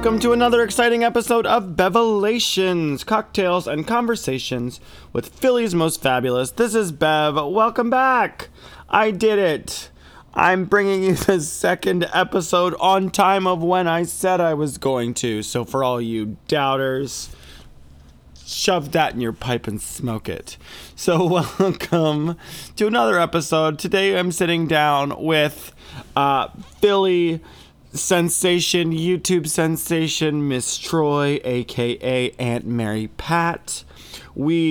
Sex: male